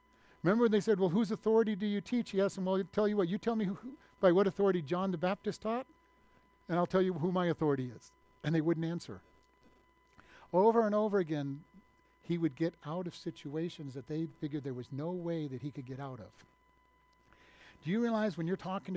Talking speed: 215 wpm